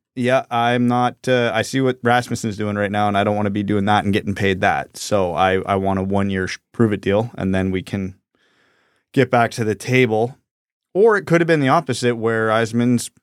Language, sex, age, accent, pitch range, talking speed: English, male, 30-49, American, 100-125 Hz, 225 wpm